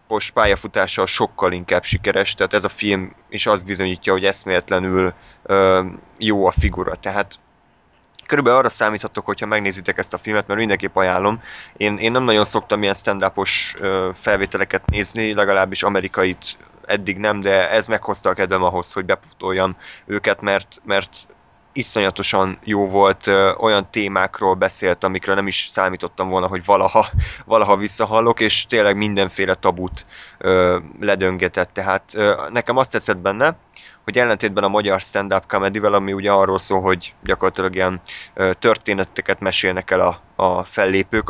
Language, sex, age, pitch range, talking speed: Hungarian, male, 20-39, 95-105 Hz, 150 wpm